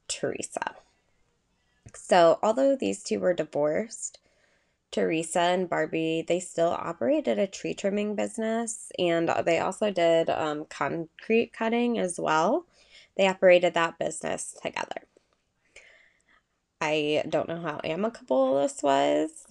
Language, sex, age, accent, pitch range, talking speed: English, female, 20-39, American, 155-200 Hz, 115 wpm